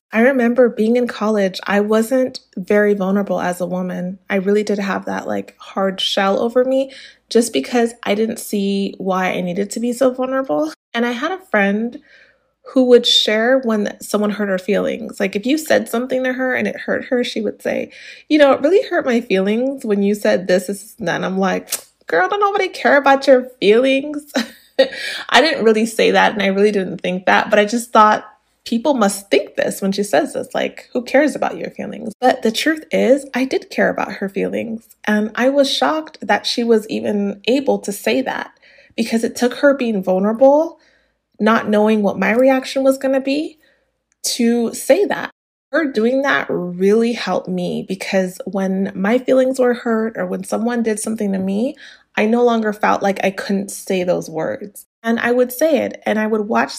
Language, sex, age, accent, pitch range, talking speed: English, female, 20-39, American, 205-265 Hz, 200 wpm